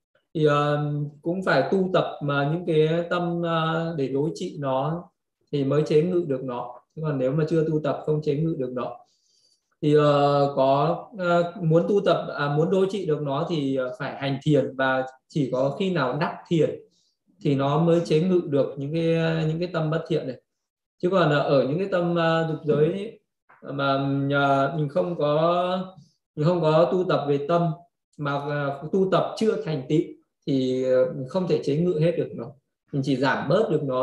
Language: Vietnamese